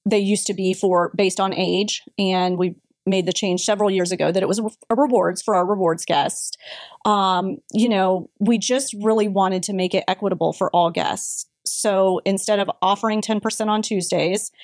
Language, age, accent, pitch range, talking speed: English, 30-49, American, 185-220 Hz, 190 wpm